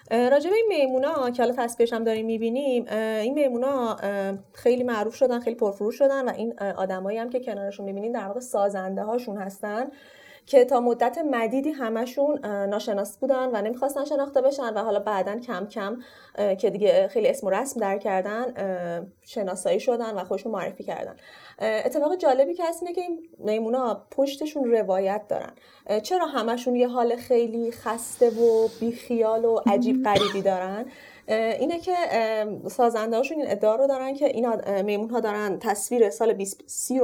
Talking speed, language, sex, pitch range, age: 155 wpm, Persian, female, 210-260 Hz, 30-49